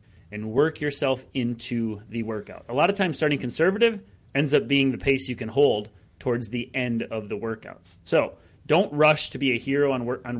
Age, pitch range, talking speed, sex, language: 30-49, 110-150 Hz, 210 wpm, male, English